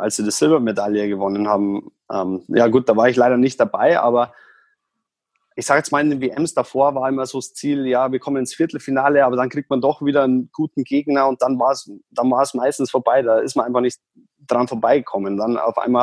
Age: 20-39